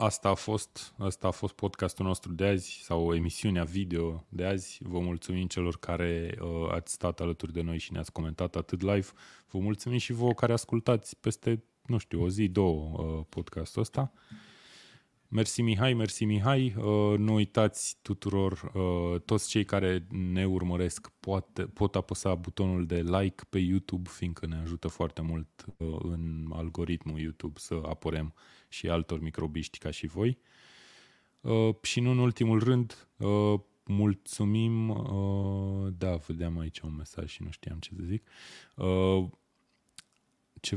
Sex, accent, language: male, native, Romanian